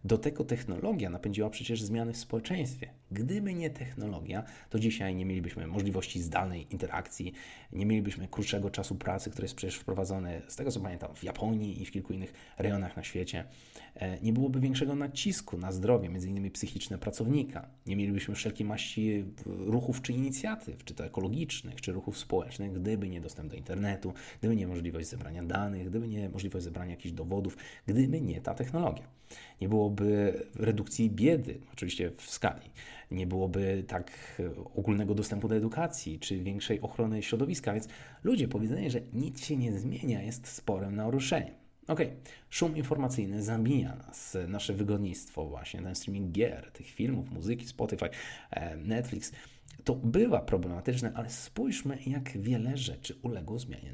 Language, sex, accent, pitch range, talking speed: Polish, male, native, 95-125 Hz, 155 wpm